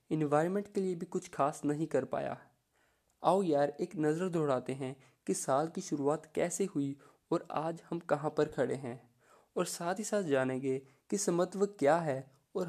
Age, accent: 20-39, native